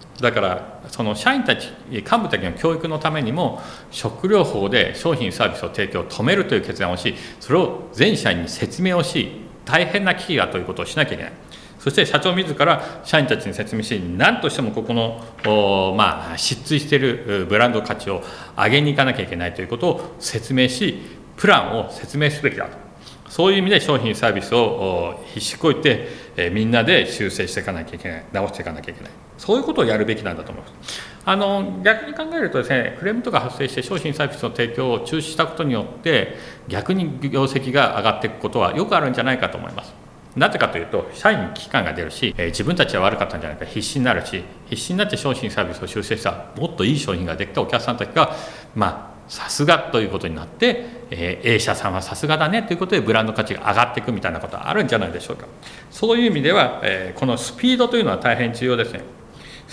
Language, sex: Japanese, male